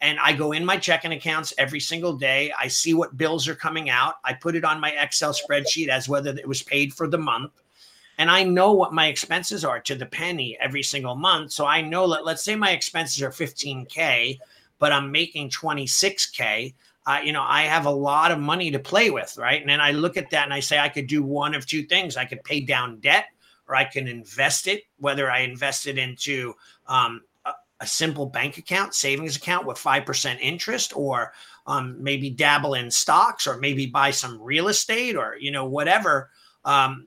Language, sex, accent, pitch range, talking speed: English, male, American, 135-165 Hz, 210 wpm